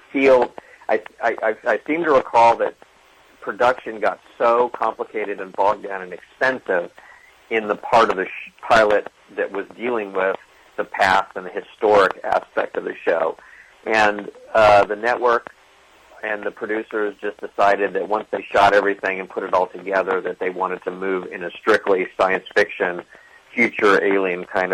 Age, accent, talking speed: 50-69, American, 160 wpm